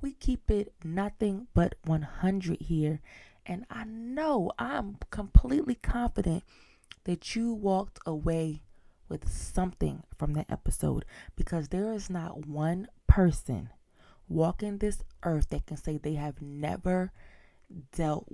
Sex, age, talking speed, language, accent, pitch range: female, 20-39, 125 wpm, English, American, 150-185 Hz